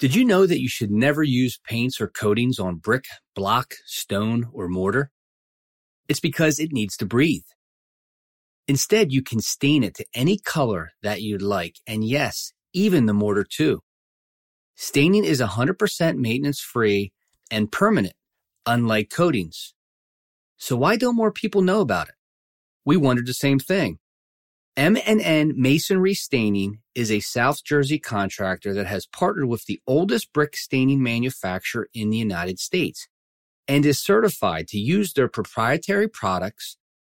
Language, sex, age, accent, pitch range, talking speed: English, male, 30-49, American, 105-160 Hz, 145 wpm